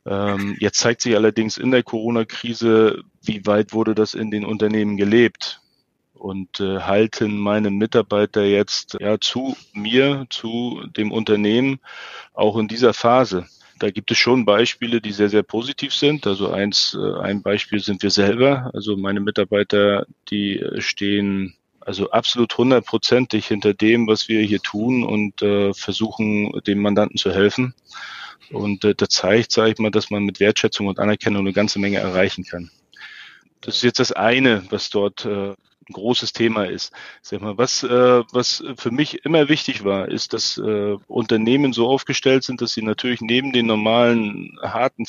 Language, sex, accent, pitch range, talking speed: German, male, German, 100-120 Hz, 160 wpm